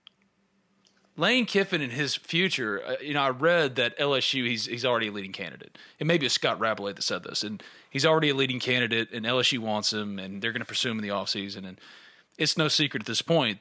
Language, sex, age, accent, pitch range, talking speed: English, male, 30-49, American, 110-155 Hz, 240 wpm